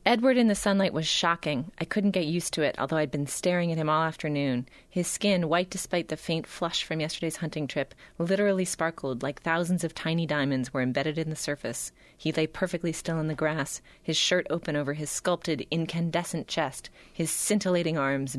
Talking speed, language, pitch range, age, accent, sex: 200 wpm, English, 135-165 Hz, 30-49, American, female